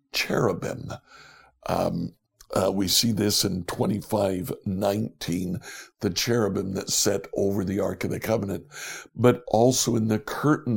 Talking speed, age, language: 130 wpm, 60-79, English